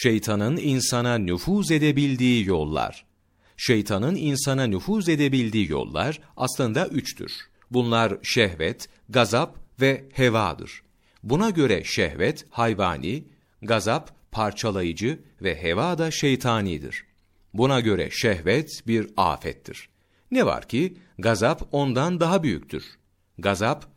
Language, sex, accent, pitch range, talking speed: Turkish, male, native, 95-145 Hz, 100 wpm